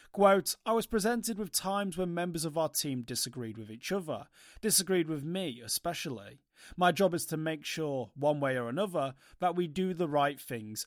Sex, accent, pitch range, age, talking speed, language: male, British, 130-185 Hz, 30-49, 195 wpm, English